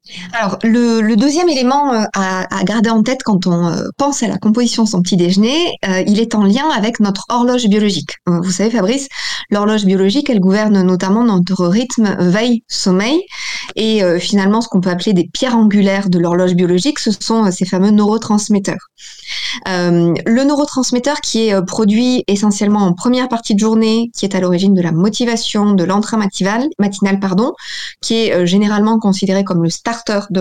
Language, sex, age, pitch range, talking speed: French, female, 20-39, 185-230 Hz, 185 wpm